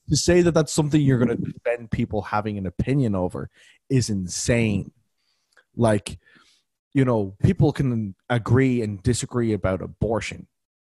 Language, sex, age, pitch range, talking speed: English, male, 20-39, 100-125 Hz, 145 wpm